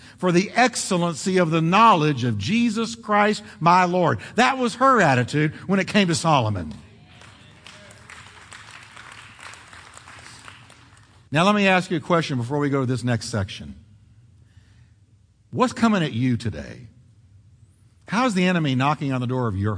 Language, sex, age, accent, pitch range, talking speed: English, male, 50-69, American, 110-160 Hz, 145 wpm